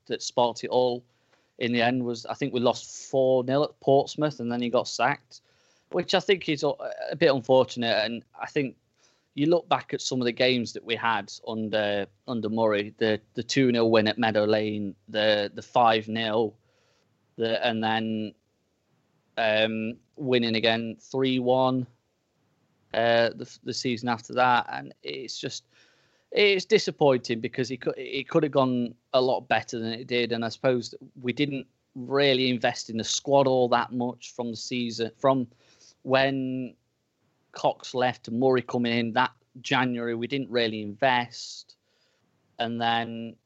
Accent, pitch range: British, 115-130 Hz